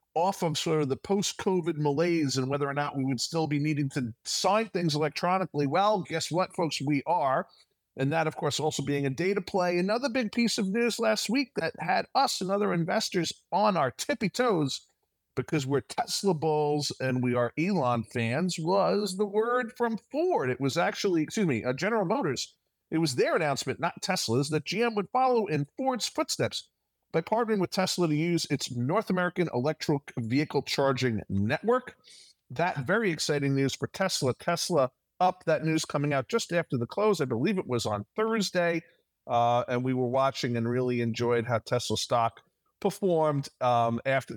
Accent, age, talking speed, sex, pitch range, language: American, 50-69, 185 wpm, male, 130-195 Hz, English